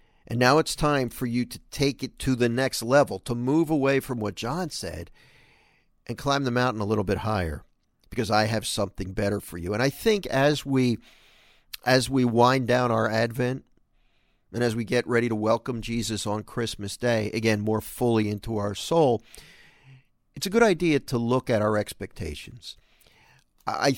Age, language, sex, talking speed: 50-69, English, male, 185 wpm